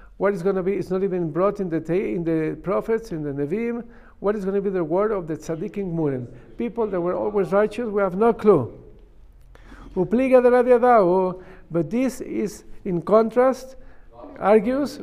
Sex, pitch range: male, 180-230 Hz